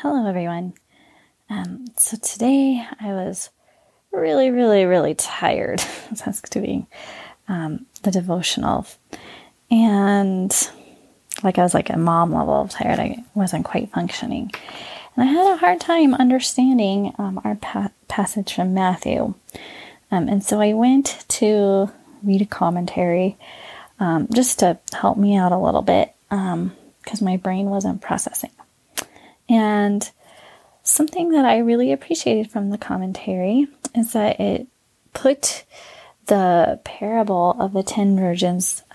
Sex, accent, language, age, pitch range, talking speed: female, American, English, 20-39, 185-245 Hz, 130 wpm